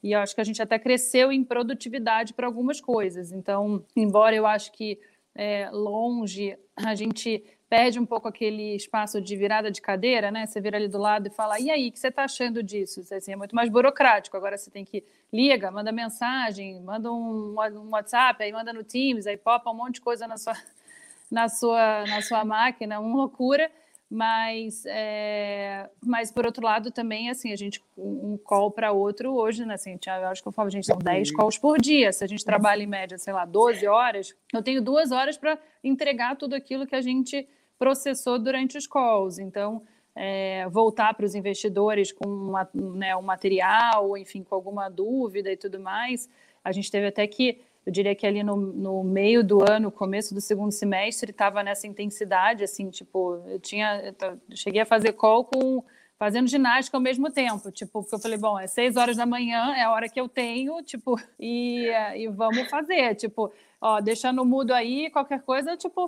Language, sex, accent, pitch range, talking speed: Portuguese, female, Brazilian, 205-245 Hz, 200 wpm